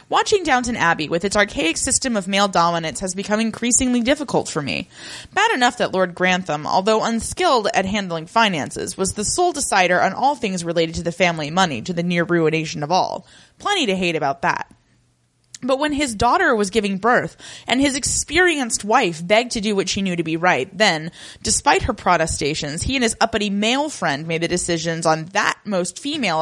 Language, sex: English, female